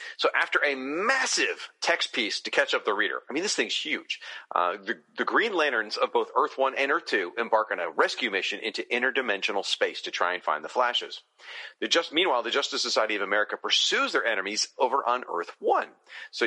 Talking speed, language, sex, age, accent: 200 wpm, English, male, 40-59, American